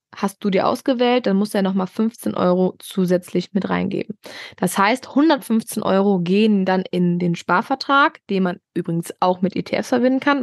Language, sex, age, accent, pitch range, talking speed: German, female, 20-39, German, 185-230 Hz, 180 wpm